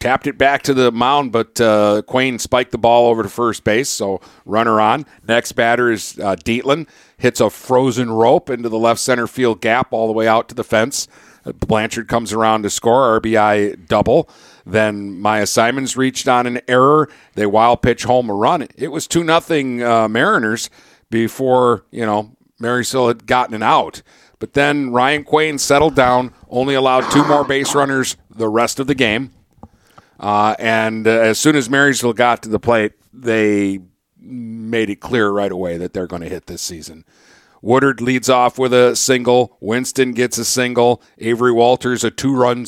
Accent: American